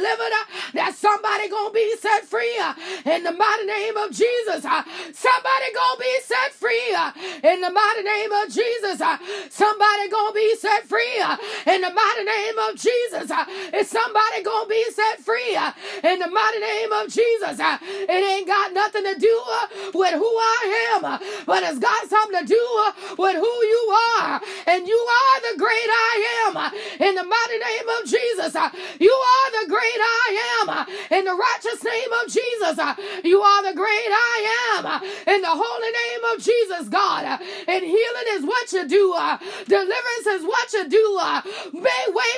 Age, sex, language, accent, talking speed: 30-49, female, English, American, 185 wpm